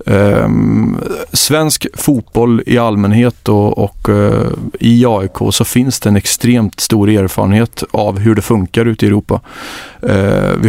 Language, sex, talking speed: English, male, 125 wpm